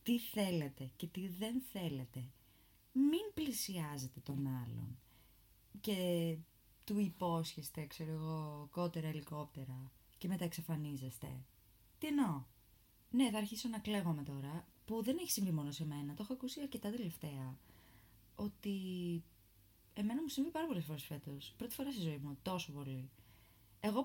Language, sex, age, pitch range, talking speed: Greek, female, 20-39, 135-215 Hz, 145 wpm